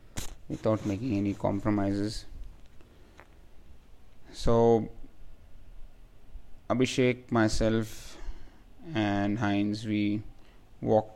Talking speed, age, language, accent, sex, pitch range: 60 wpm, 30-49, English, Indian, male, 100-115 Hz